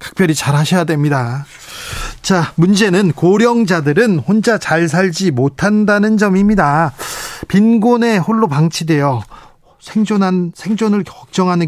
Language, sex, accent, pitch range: Korean, male, native, 145-185 Hz